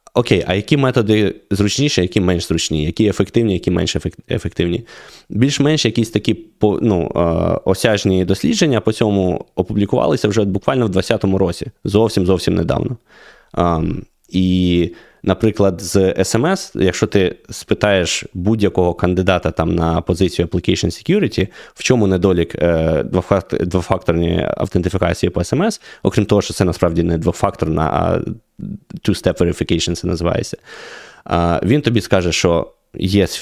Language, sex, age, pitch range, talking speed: Ukrainian, male, 20-39, 90-105 Hz, 120 wpm